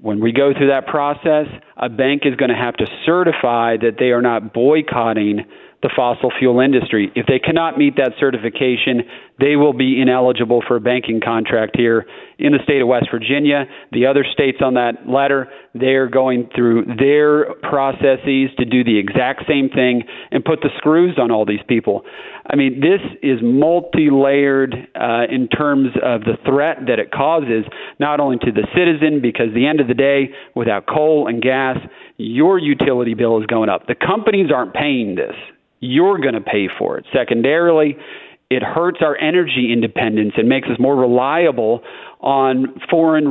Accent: American